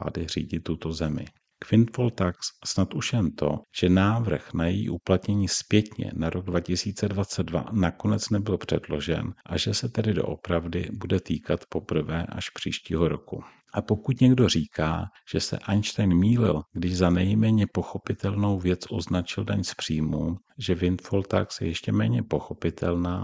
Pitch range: 85-105 Hz